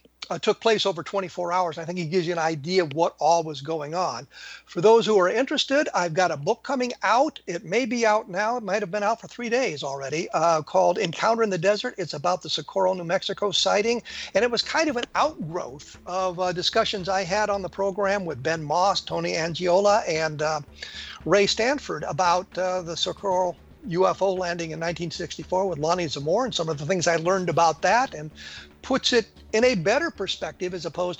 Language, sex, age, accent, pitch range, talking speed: English, male, 50-69, American, 175-220 Hz, 210 wpm